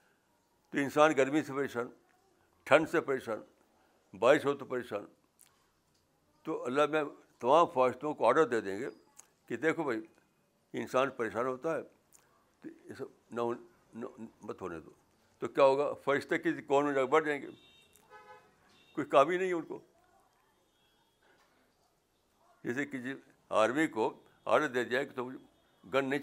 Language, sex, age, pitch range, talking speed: Urdu, male, 60-79, 120-165 Hz, 135 wpm